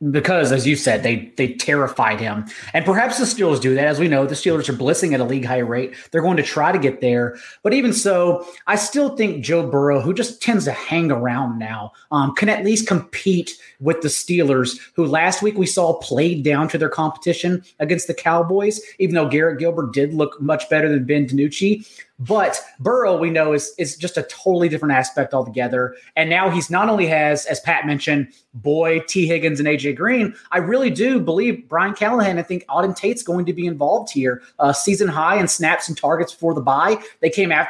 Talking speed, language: 210 wpm, English